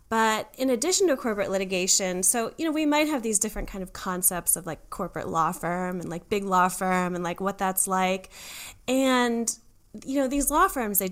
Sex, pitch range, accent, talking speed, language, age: female, 180-220 Hz, American, 210 wpm, English, 10-29